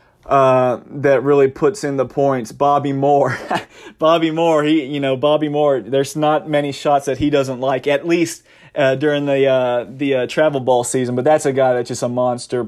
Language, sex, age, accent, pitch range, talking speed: English, male, 30-49, American, 125-150 Hz, 205 wpm